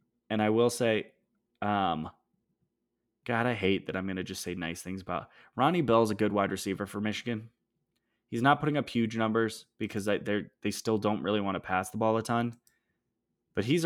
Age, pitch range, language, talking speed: 20-39, 95-110 Hz, English, 200 wpm